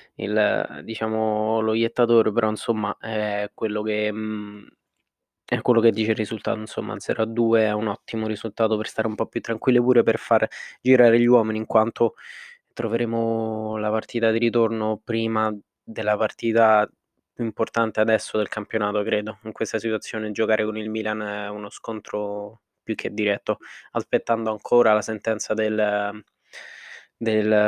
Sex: male